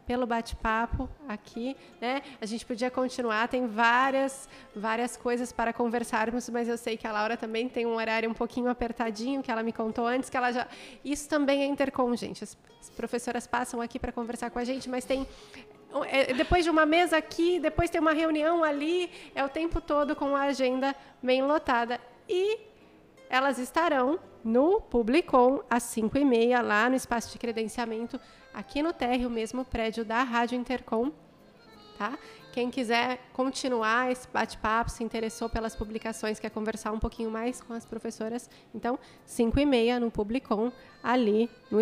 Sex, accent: female, Brazilian